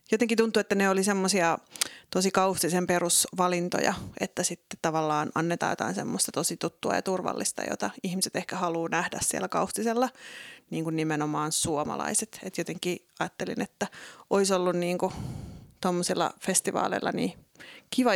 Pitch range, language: 180-200 Hz, Finnish